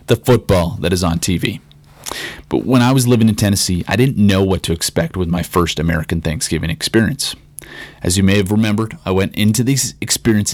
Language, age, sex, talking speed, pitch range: English, 30-49, male, 200 wpm, 90-120 Hz